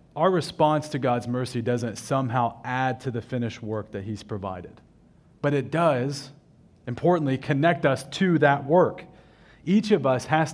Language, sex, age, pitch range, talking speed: English, male, 30-49, 120-160 Hz, 160 wpm